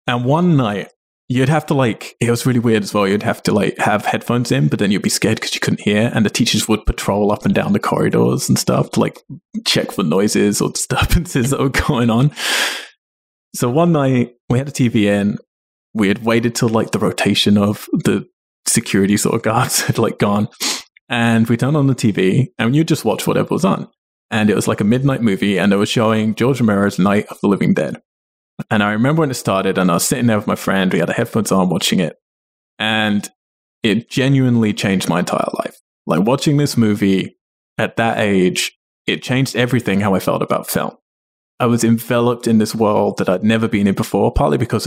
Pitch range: 100-130 Hz